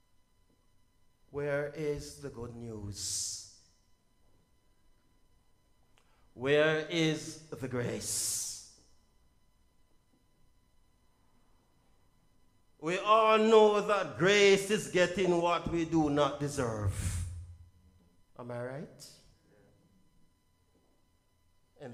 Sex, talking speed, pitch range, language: male, 70 wpm, 90-145 Hz, English